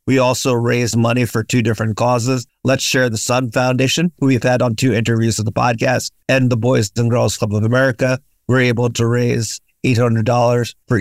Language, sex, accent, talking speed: English, male, American, 195 wpm